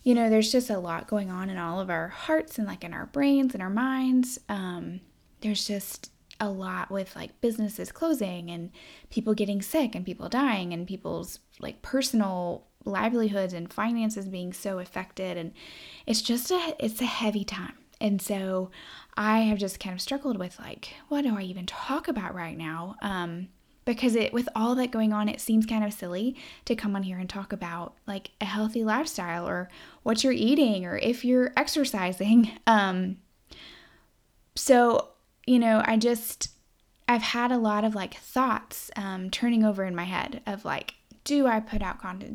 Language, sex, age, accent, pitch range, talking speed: English, female, 10-29, American, 190-245 Hz, 185 wpm